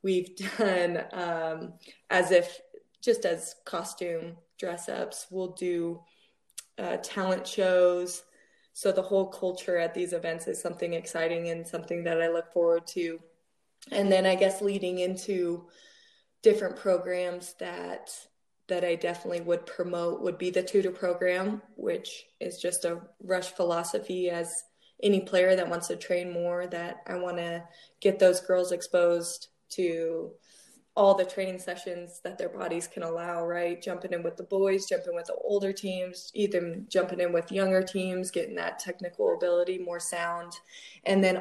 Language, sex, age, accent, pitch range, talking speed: English, female, 20-39, American, 170-190 Hz, 155 wpm